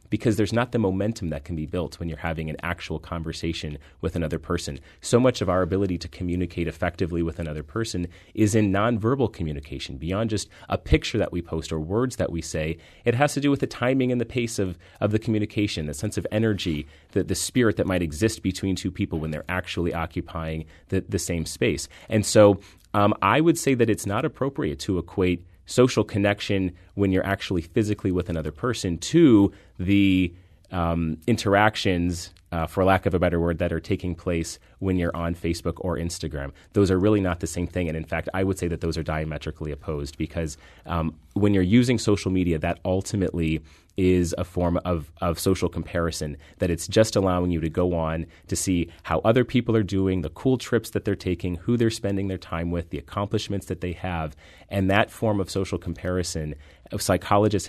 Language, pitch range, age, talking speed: English, 80-100 Hz, 30-49, 205 wpm